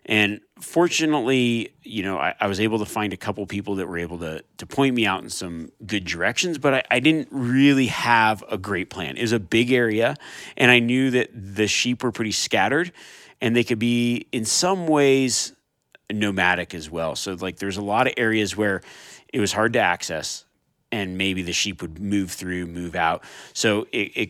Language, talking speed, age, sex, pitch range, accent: English, 205 wpm, 30-49, male, 95-125 Hz, American